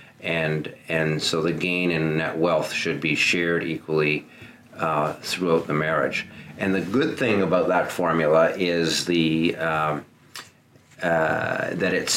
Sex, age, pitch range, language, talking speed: male, 40-59, 80-95 Hz, English, 145 wpm